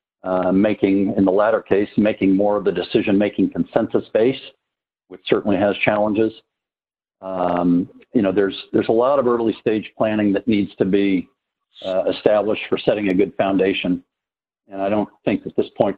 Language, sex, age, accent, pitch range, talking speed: English, male, 50-69, American, 95-115 Hz, 170 wpm